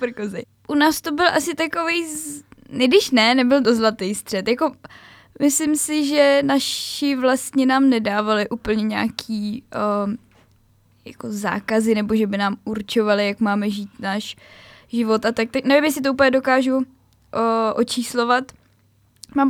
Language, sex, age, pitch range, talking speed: Czech, female, 10-29, 205-240 Hz, 145 wpm